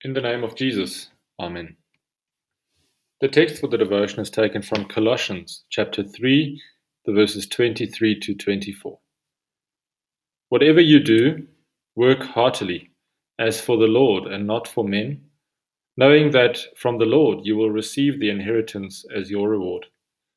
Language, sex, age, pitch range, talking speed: English, male, 30-49, 105-140 Hz, 140 wpm